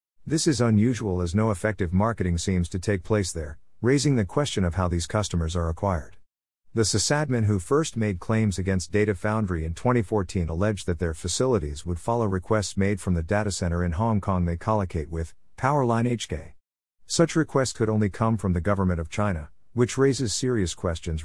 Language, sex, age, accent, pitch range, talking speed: English, male, 50-69, American, 85-110 Hz, 185 wpm